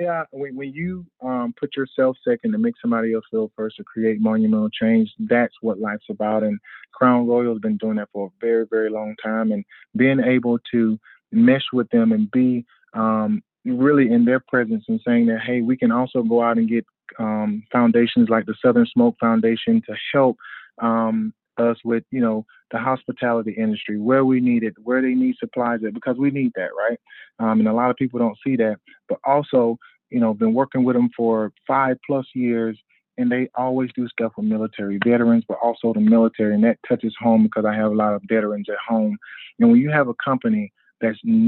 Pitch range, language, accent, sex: 110-130 Hz, English, American, male